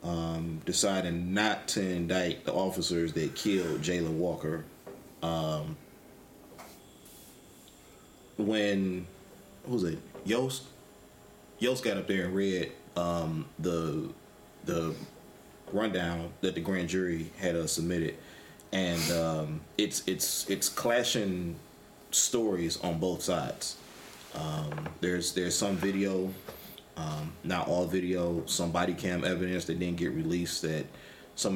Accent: American